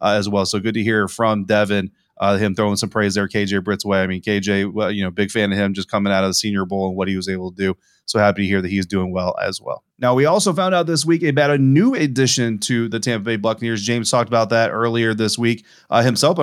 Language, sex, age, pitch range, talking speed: English, male, 20-39, 110-135 Hz, 280 wpm